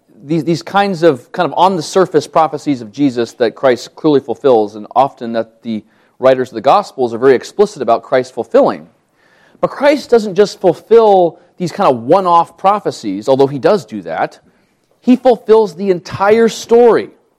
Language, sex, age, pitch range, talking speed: English, male, 30-49, 140-200 Hz, 165 wpm